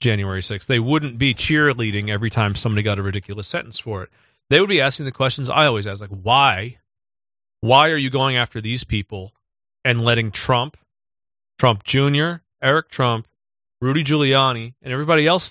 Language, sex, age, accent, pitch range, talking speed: English, male, 30-49, American, 105-140 Hz, 175 wpm